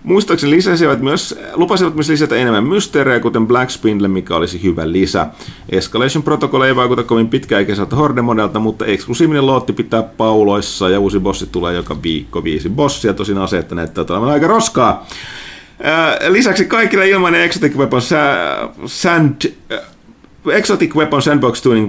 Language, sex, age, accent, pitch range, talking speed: Finnish, male, 30-49, native, 100-145 Hz, 140 wpm